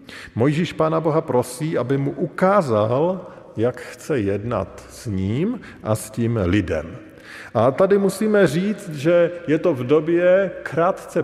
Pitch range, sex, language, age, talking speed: 100-150 Hz, male, Slovak, 50-69, 140 wpm